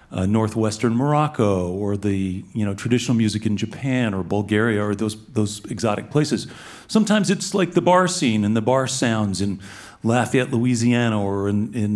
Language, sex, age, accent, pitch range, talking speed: English, male, 40-59, American, 110-145 Hz, 170 wpm